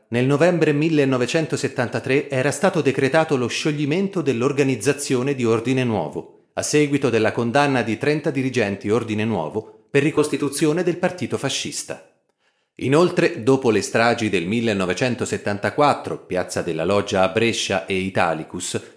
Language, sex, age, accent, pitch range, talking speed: Italian, male, 30-49, native, 115-150 Hz, 125 wpm